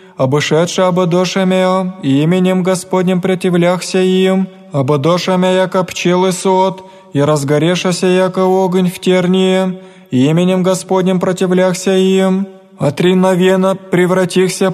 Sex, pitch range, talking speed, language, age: male, 180-190 Hz, 95 wpm, Greek, 20-39